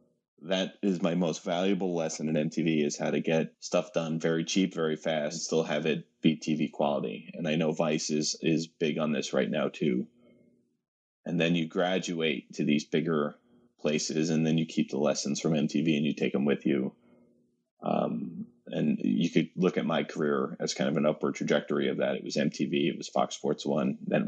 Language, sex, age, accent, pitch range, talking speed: English, male, 30-49, American, 75-85 Hz, 210 wpm